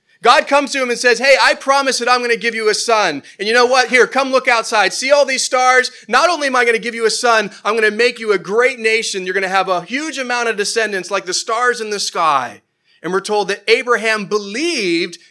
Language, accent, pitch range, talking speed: English, American, 190-250 Hz, 265 wpm